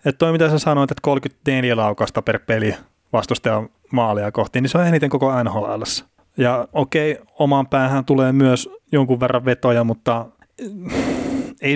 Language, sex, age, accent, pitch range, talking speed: Finnish, male, 30-49, native, 115-145 Hz, 155 wpm